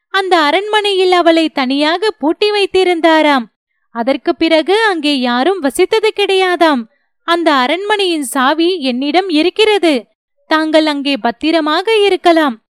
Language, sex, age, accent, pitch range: Tamil, female, 30-49, native, 280-380 Hz